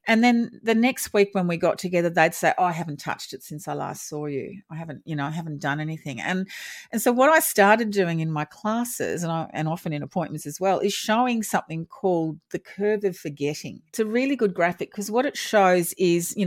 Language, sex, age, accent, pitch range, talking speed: English, female, 40-59, Australian, 150-200 Hz, 240 wpm